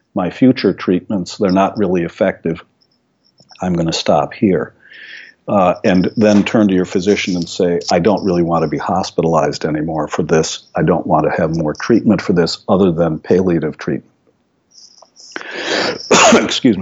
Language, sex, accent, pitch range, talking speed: English, male, American, 90-105 Hz, 155 wpm